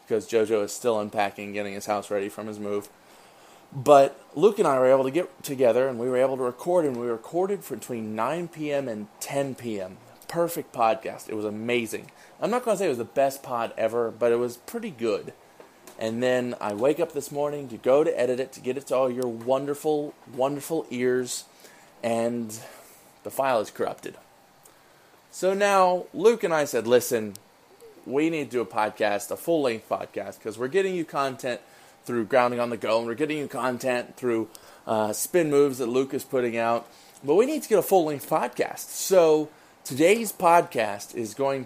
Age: 20-39